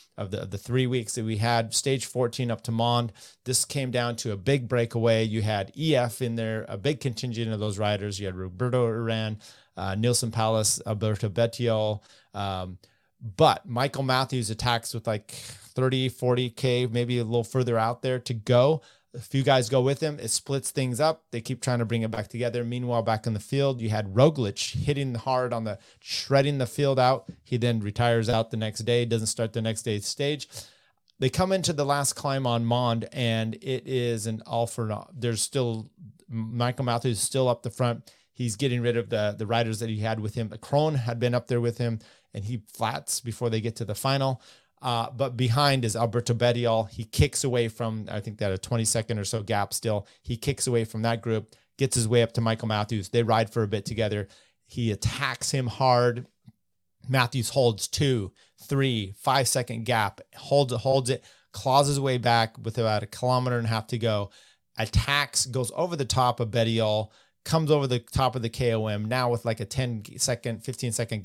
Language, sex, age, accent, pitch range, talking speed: English, male, 30-49, American, 110-130 Hz, 205 wpm